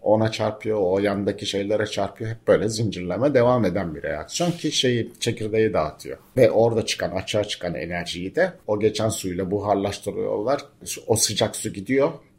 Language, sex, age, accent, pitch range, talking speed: Turkish, male, 50-69, native, 100-130 Hz, 155 wpm